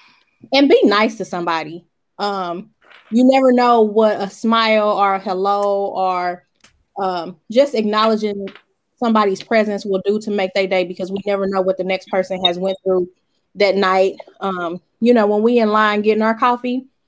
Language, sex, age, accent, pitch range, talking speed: English, female, 20-39, American, 195-235 Hz, 175 wpm